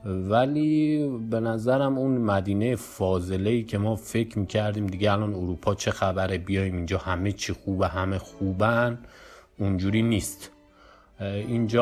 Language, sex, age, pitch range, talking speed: Persian, male, 30-49, 90-105 Hz, 125 wpm